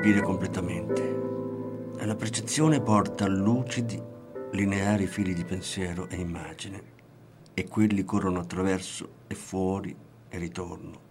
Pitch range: 95-125 Hz